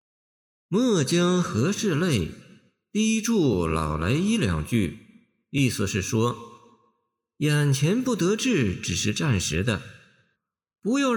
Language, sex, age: Chinese, male, 50-69